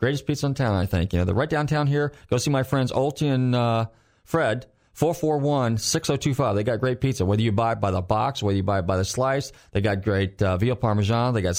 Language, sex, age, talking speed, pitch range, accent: English, male, 40-59, 245 wpm, 110-145 Hz, American